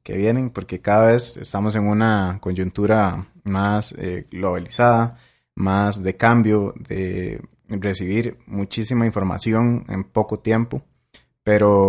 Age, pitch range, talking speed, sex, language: 30-49, 95-115 Hz, 115 wpm, male, Spanish